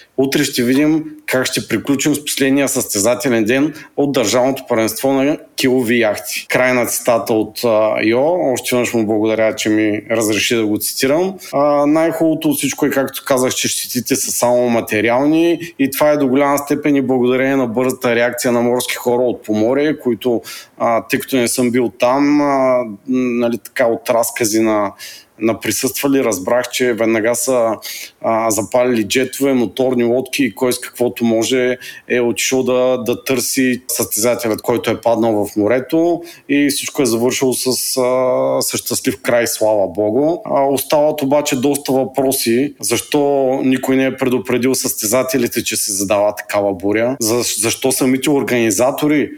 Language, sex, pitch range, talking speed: Bulgarian, male, 115-135 Hz, 150 wpm